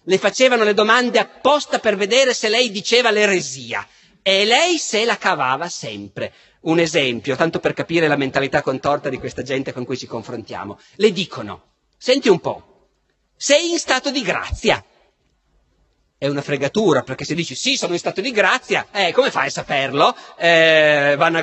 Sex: male